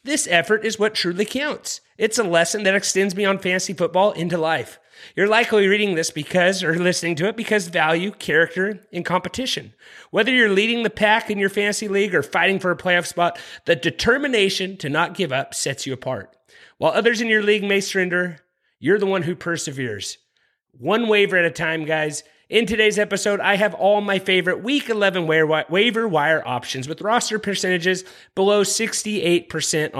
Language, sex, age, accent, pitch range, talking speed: English, male, 30-49, American, 170-205 Hz, 180 wpm